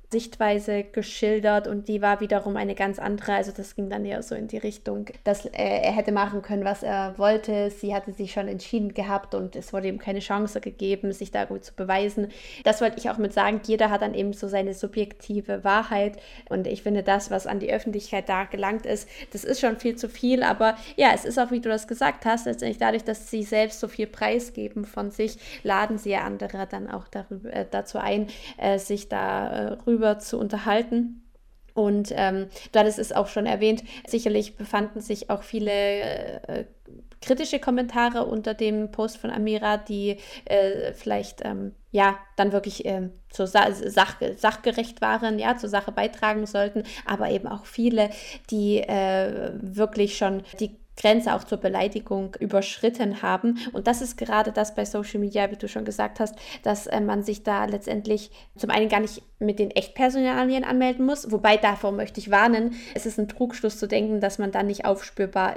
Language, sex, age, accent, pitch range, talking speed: German, female, 20-39, German, 200-220 Hz, 190 wpm